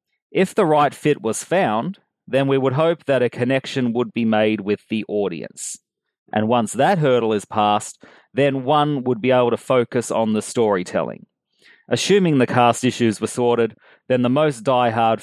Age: 30-49